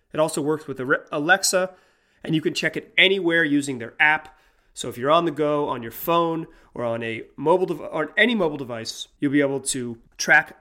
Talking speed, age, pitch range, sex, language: 210 wpm, 30-49, 130-160 Hz, male, English